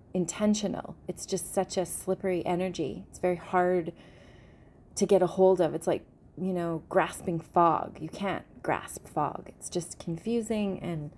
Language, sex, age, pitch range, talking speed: English, female, 30-49, 185-235 Hz, 155 wpm